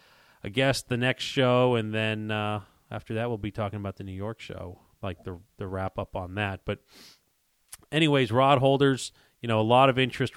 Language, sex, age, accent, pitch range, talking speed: English, male, 30-49, American, 100-115 Hz, 205 wpm